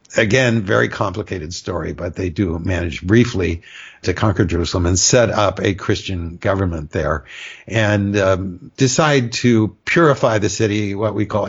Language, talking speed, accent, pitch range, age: English, 150 wpm, American, 90-110 Hz, 60-79